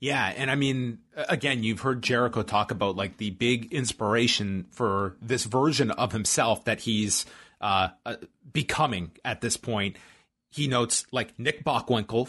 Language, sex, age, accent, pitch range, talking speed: English, male, 30-49, American, 110-135 Hz, 150 wpm